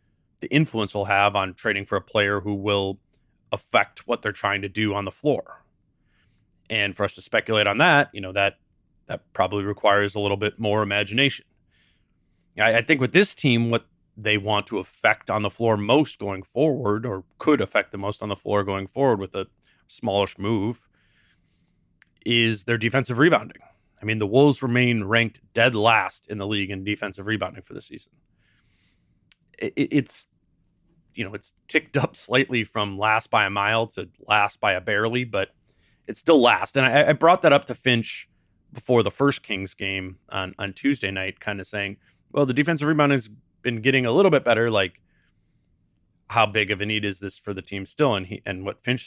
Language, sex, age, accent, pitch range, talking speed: English, male, 30-49, American, 100-120 Hz, 195 wpm